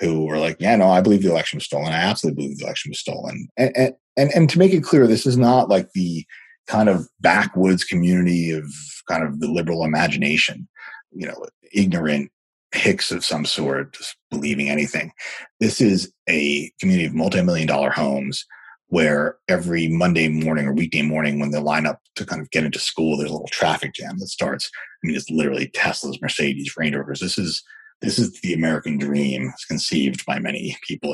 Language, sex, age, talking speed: English, male, 30-49, 200 wpm